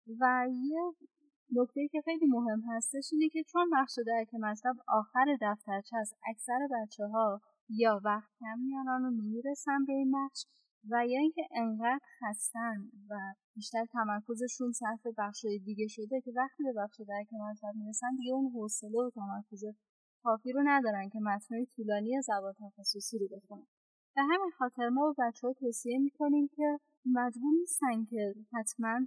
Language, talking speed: Persian, 150 wpm